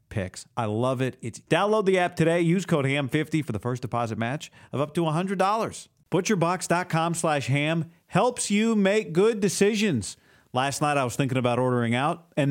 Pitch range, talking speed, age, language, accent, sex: 125-170 Hz, 190 wpm, 40-59, English, American, male